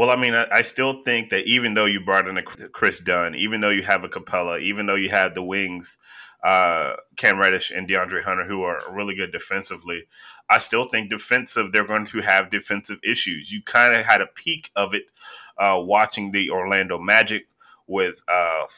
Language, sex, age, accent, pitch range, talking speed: English, male, 20-39, American, 105-125 Hz, 205 wpm